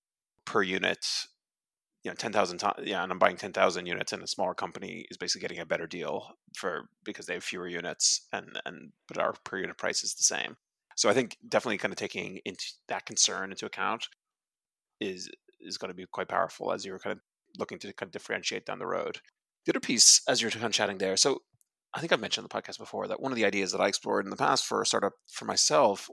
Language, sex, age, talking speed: English, male, 30-49, 230 wpm